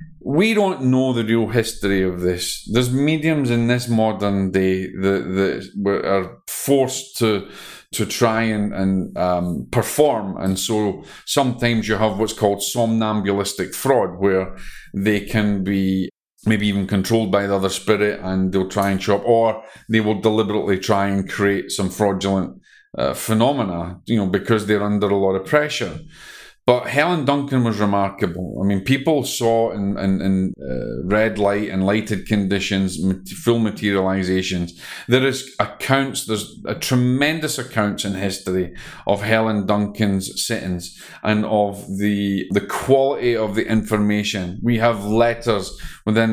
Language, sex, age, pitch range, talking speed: English, male, 40-59, 95-115 Hz, 150 wpm